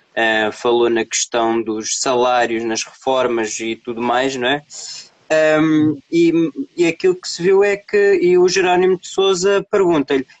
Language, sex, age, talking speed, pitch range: Portuguese, male, 20-39, 160 wpm, 125-175 Hz